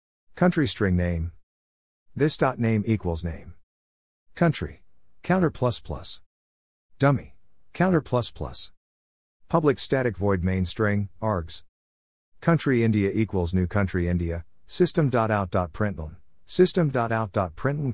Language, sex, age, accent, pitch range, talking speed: English, male, 50-69, American, 80-115 Hz, 95 wpm